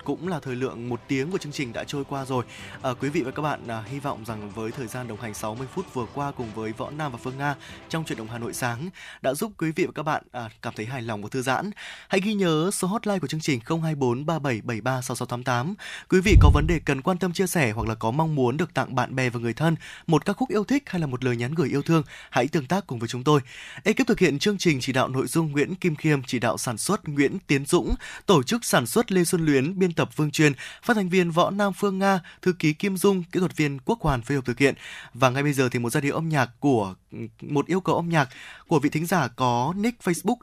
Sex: male